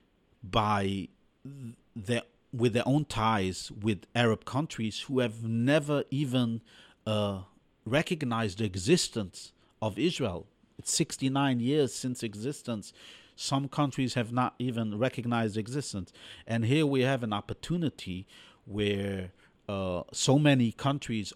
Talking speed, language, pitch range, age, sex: 120 wpm, English, 100-125 Hz, 50-69, male